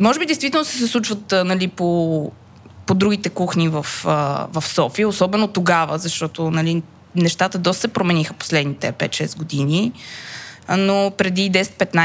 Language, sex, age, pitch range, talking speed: Bulgarian, female, 20-39, 175-220 Hz, 130 wpm